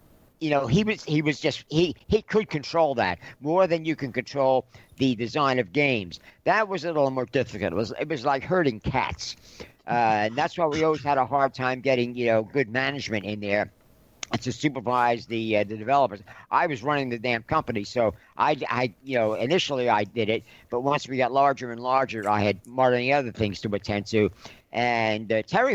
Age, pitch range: 50-69, 115-150 Hz